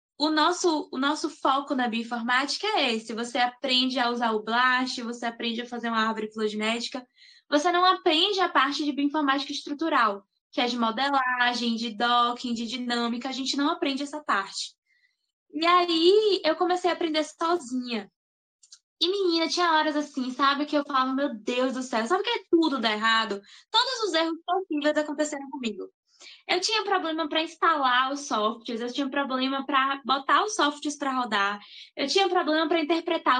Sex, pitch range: female, 250-325 Hz